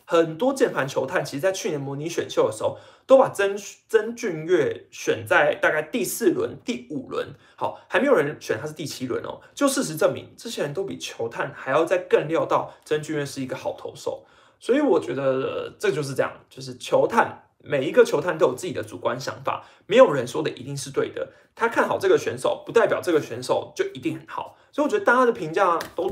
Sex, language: male, Chinese